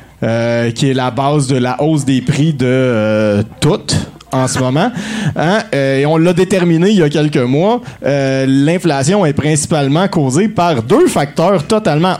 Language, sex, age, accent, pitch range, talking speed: French, male, 30-49, Canadian, 140-175 Hz, 170 wpm